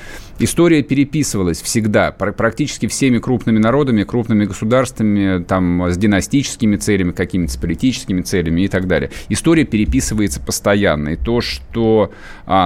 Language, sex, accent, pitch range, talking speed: Russian, male, native, 100-130 Hz, 130 wpm